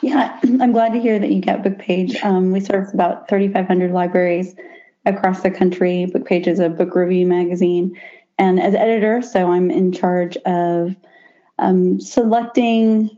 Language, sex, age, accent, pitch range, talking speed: English, female, 30-49, American, 175-200 Hz, 150 wpm